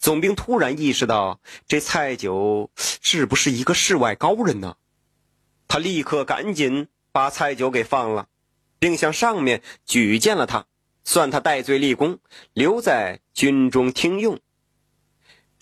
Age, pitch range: 30-49, 130-195 Hz